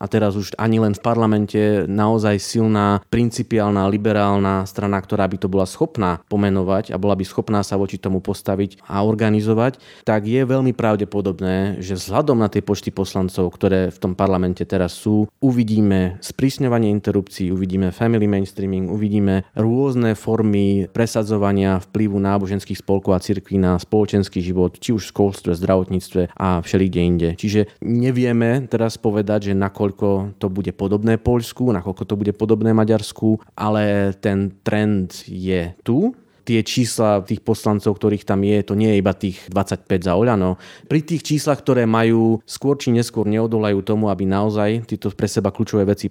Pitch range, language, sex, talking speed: 100-115 Hz, Slovak, male, 160 wpm